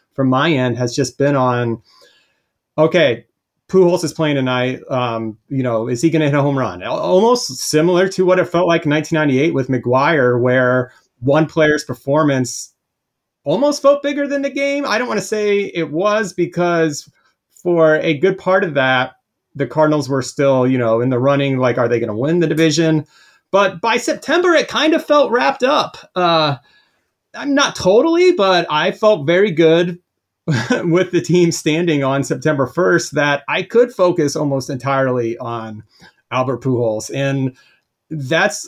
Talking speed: 170 wpm